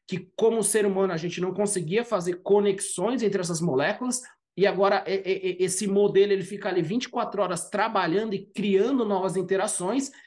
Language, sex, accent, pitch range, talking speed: Portuguese, male, Brazilian, 180-215 Hz, 170 wpm